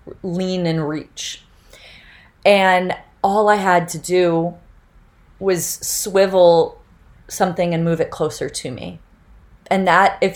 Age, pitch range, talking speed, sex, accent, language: 30-49, 155-190 Hz, 120 wpm, female, American, English